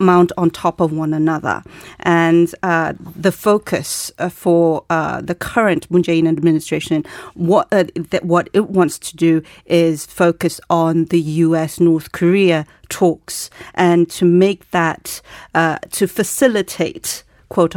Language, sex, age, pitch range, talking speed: English, female, 40-59, 165-190 Hz, 140 wpm